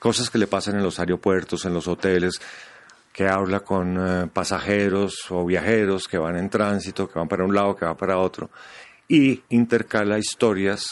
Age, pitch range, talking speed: 40-59, 95-105 Hz, 180 wpm